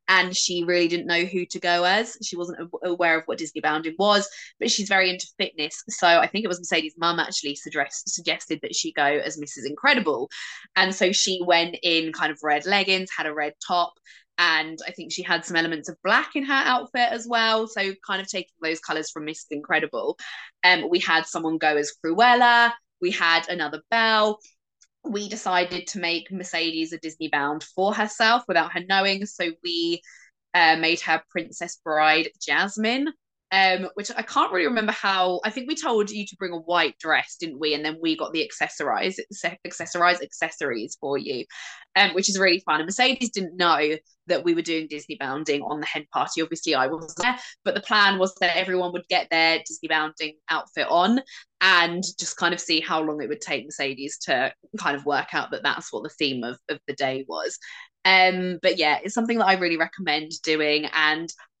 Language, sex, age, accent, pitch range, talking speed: English, female, 20-39, British, 160-195 Hz, 205 wpm